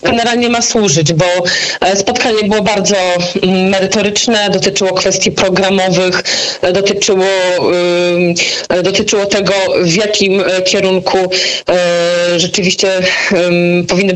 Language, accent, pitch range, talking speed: Polish, native, 175-210 Hz, 80 wpm